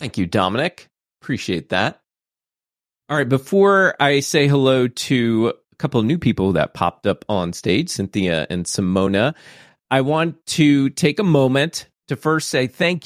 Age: 30-49